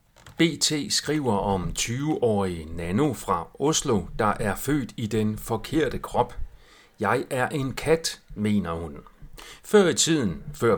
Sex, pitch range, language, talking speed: male, 100-150 Hz, Danish, 135 wpm